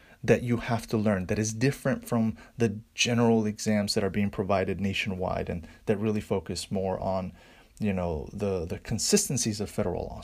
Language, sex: English, male